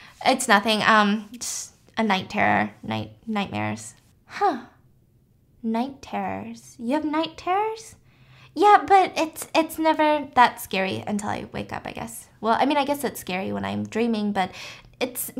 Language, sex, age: English, female, 10-29